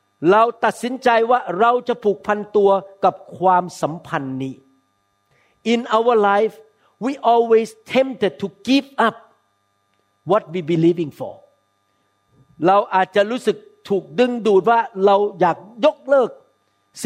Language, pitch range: Thai, 170-230 Hz